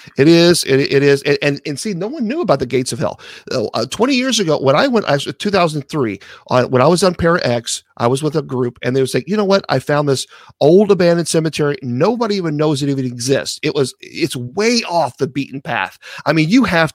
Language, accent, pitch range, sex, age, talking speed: English, American, 130-165 Hz, male, 50-69, 235 wpm